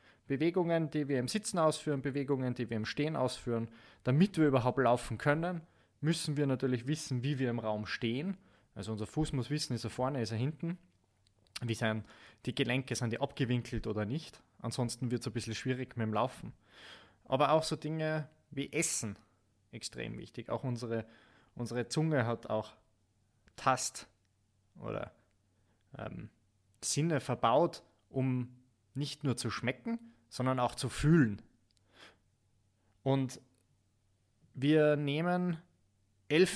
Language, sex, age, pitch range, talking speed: German, male, 20-39, 110-150 Hz, 145 wpm